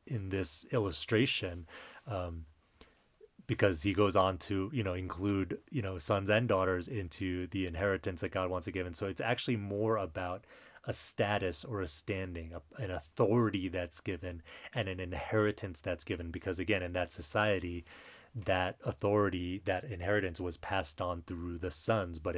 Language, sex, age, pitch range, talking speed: English, male, 30-49, 90-110 Hz, 165 wpm